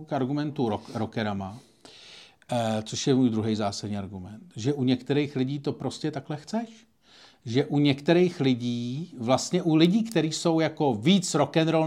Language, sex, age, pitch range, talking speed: Czech, male, 40-59, 120-160 Hz, 155 wpm